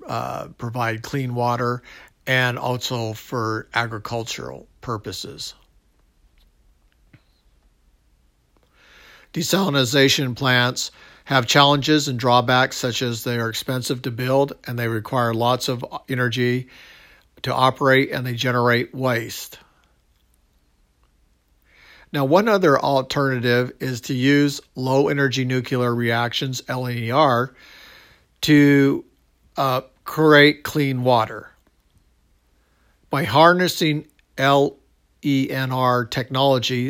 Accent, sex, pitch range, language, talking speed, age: American, male, 120-135 Hz, English, 90 wpm, 50-69